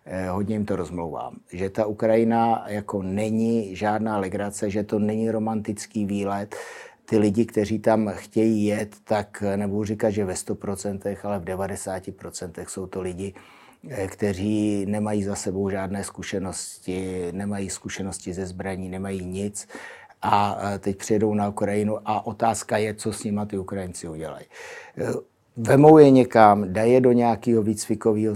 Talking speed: 140 wpm